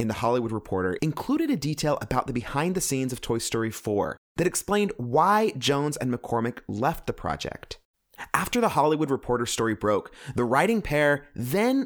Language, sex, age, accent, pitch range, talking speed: English, male, 30-49, American, 115-175 Hz, 175 wpm